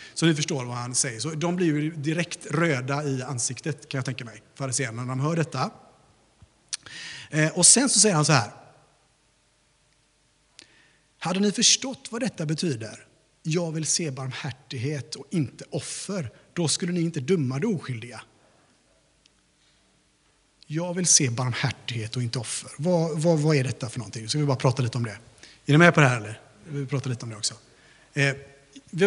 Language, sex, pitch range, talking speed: Swedish, male, 130-170 Hz, 180 wpm